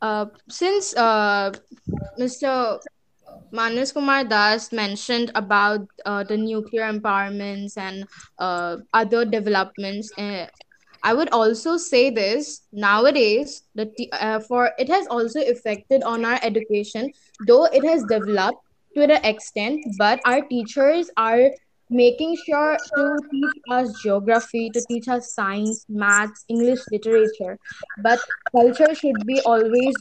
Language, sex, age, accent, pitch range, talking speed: English, female, 20-39, Indian, 220-265 Hz, 130 wpm